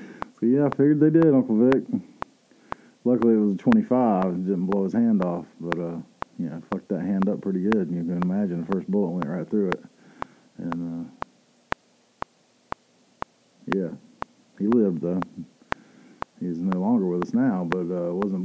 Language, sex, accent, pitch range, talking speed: English, male, American, 90-135 Hz, 180 wpm